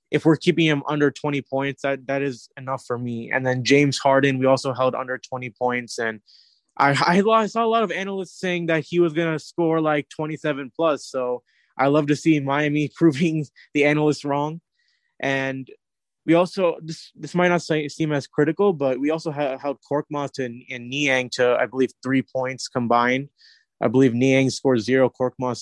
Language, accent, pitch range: English, American, 130-155 Hz